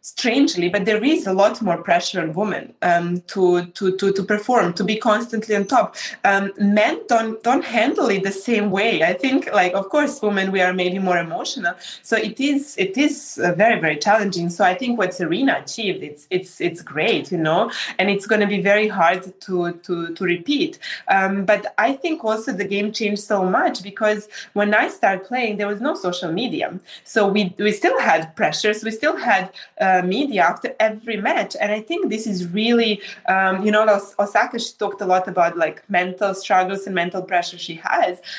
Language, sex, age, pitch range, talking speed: English, female, 20-39, 185-225 Hz, 205 wpm